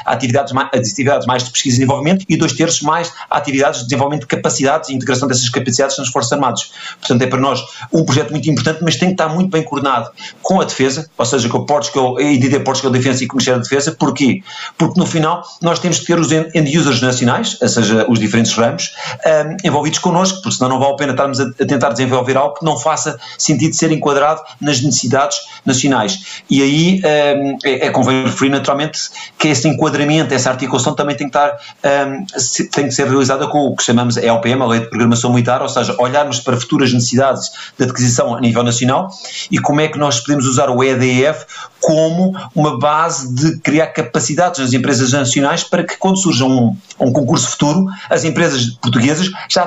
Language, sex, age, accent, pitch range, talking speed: Portuguese, male, 50-69, Portuguese, 130-155 Hz, 210 wpm